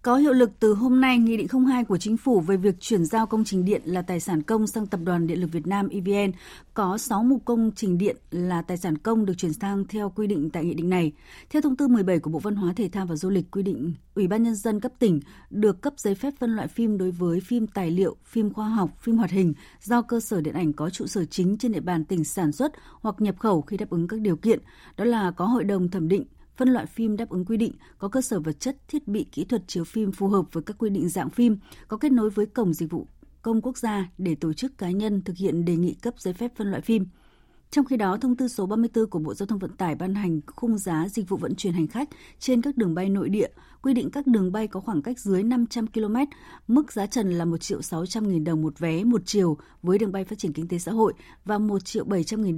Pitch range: 175-230 Hz